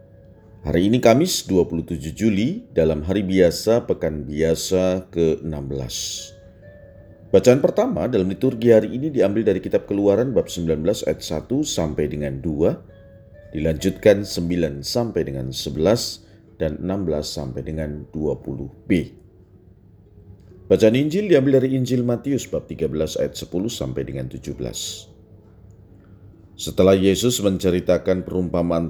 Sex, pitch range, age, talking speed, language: male, 80-105 Hz, 40-59, 115 wpm, Indonesian